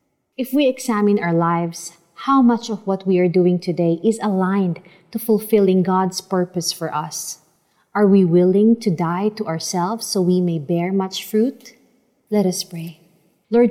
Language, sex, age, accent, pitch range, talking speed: Filipino, female, 30-49, native, 170-215 Hz, 165 wpm